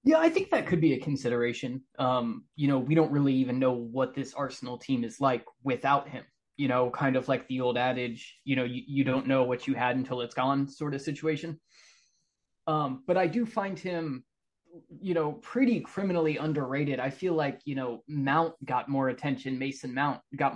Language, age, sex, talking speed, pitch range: English, 20-39, male, 205 wpm, 130-160 Hz